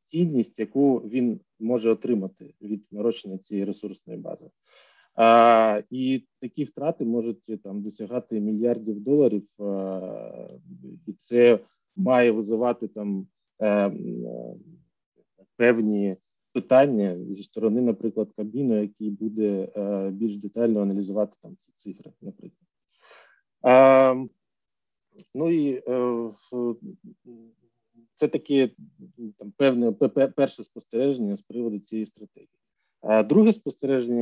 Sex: male